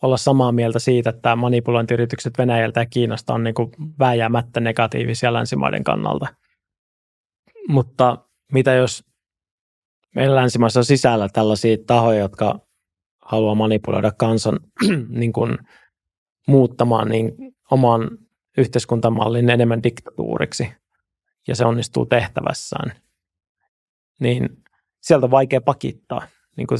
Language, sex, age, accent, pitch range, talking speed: Finnish, male, 20-39, native, 115-130 Hz, 105 wpm